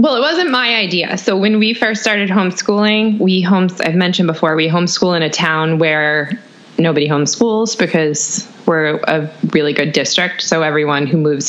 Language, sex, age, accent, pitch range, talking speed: English, female, 20-39, American, 155-195 Hz, 165 wpm